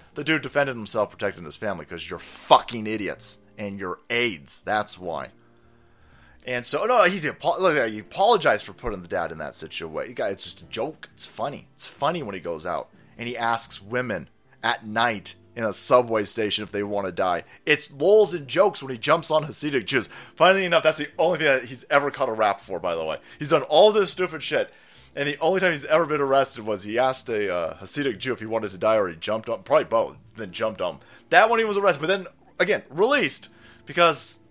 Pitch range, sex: 115-170 Hz, male